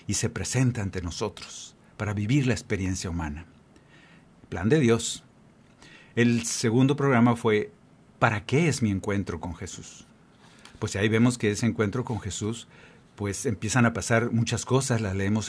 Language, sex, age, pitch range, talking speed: Spanish, male, 50-69, 100-125 Hz, 155 wpm